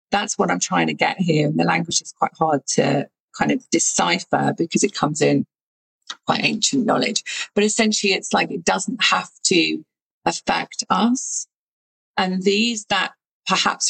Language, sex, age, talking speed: English, female, 40-59, 165 wpm